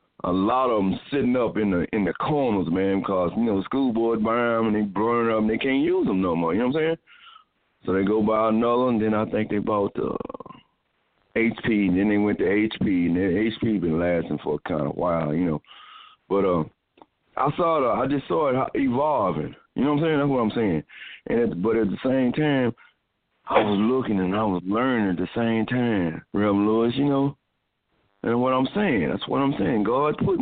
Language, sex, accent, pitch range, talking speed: English, male, American, 105-150 Hz, 235 wpm